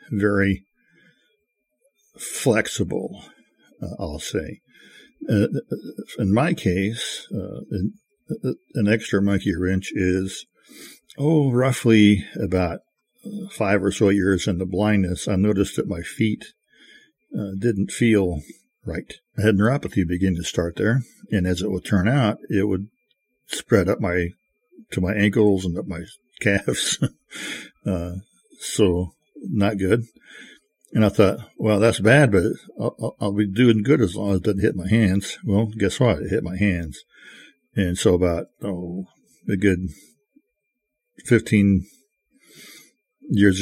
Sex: male